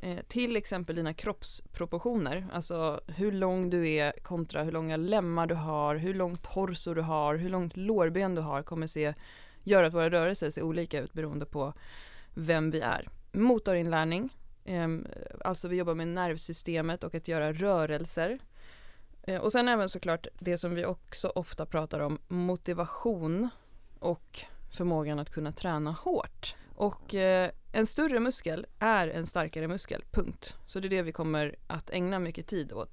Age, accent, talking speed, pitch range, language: 20-39, native, 160 wpm, 160-195 Hz, Swedish